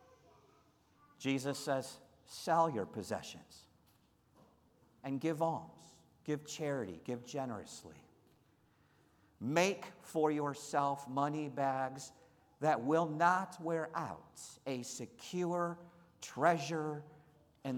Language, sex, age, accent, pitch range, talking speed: English, male, 50-69, American, 120-150 Hz, 90 wpm